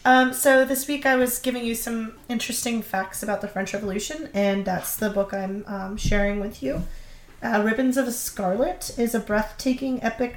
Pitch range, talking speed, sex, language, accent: 200-240 Hz, 190 wpm, female, English, American